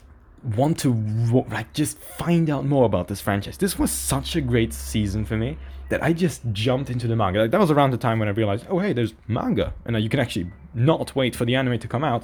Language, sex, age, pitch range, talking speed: English, male, 20-39, 100-135 Hz, 255 wpm